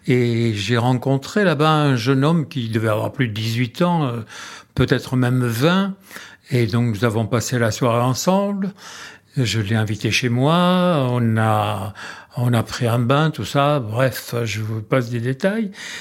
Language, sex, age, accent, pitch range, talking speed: French, male, 60-79, French, 120-155 Hz, 170 wpm